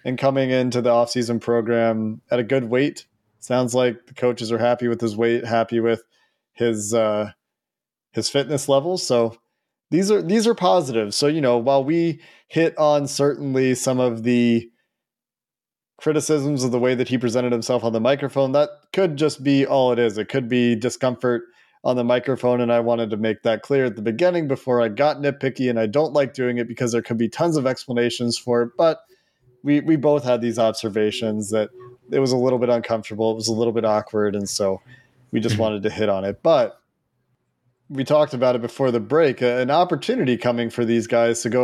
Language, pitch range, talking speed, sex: English, 115-140 Hz, 205 wpm, male